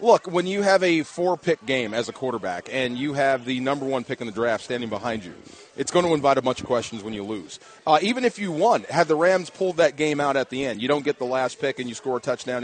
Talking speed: 285 wpm